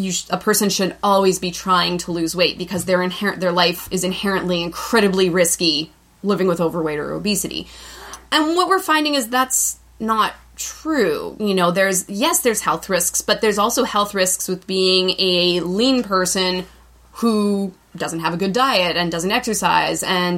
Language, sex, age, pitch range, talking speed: English, female, 20-39, 175-205 Hz, 175 wpm